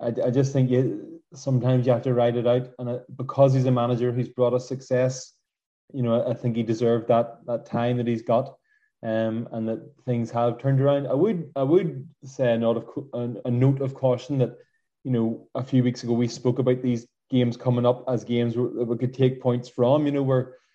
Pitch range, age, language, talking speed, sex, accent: 120-135 Hz, 20-39, English, 235 wpm, male, Irish